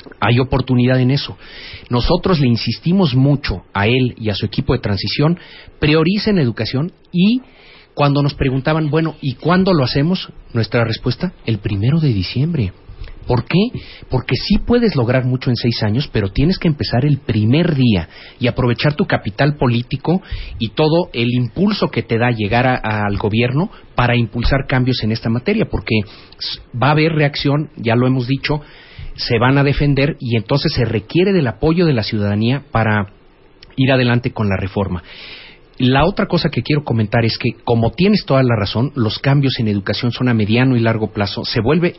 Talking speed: 180 wpm